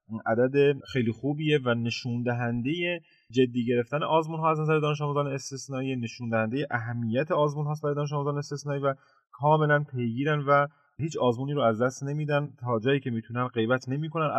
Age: 30-49